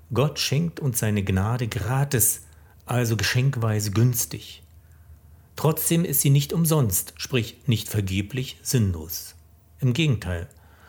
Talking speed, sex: 110 wpm, male